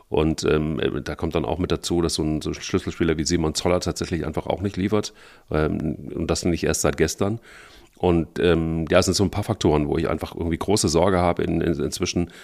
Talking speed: 225 wpm